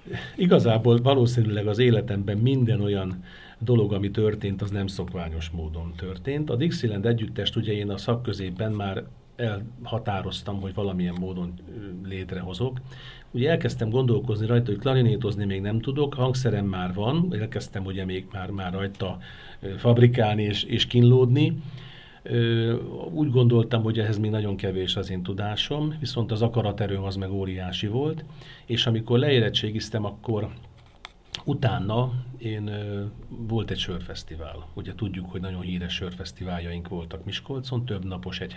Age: 50-69